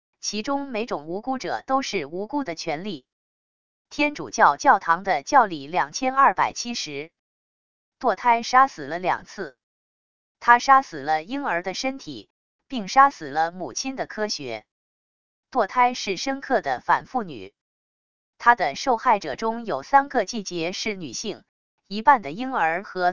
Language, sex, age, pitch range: English, female, 20-39, 185-260 Hz